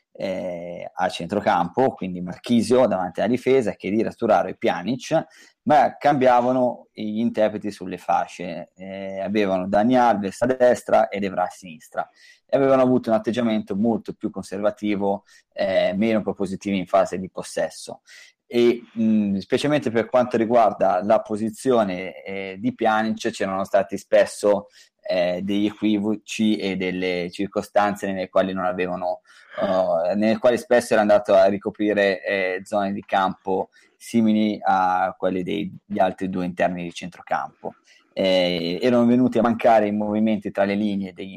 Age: 20-39